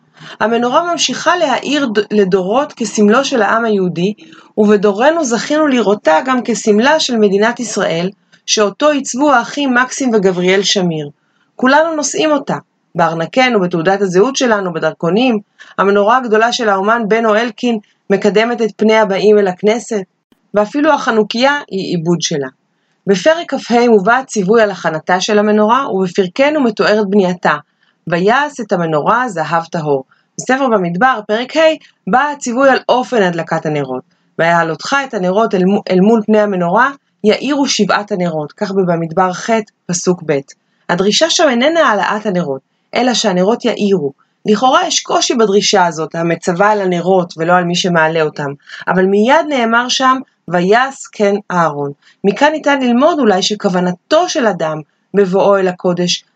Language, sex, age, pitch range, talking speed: Hebrew, female, 30-49, 180-245 Hz, 135 wpm